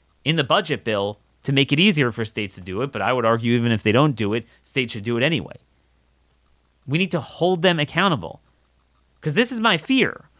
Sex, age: male, 30-49